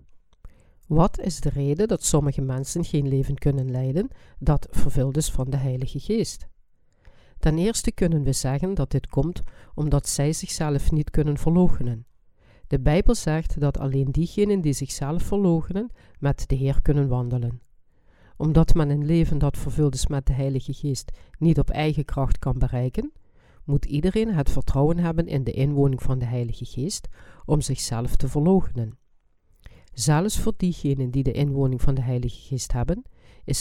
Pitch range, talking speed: 125-155 Hz, 160 wpm